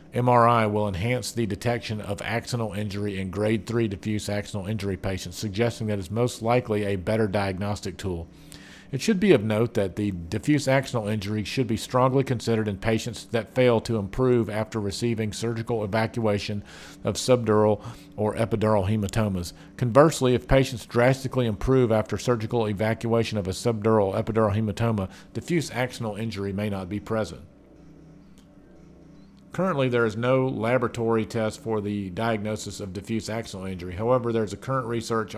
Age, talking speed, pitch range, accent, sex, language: 50-69, 160 wpm, 105-120 Hz, American, male, English